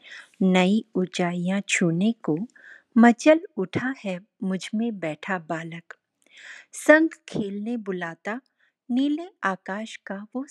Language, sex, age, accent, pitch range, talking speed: Hindi, female, 50-69, native, 180-240 Hz, 105 wpm